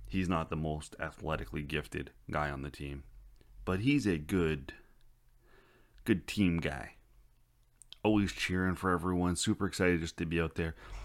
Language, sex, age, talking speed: English, male, 30-49, 150 wpm